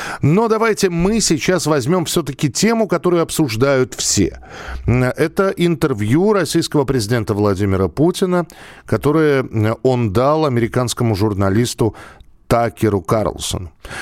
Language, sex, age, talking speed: Russian, male, 50-69, 100 wpm